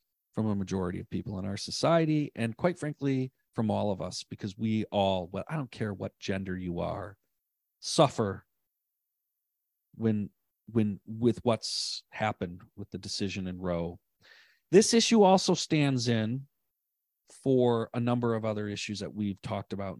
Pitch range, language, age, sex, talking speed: 100-145 Hz, English, 40-59, male, 155 wpm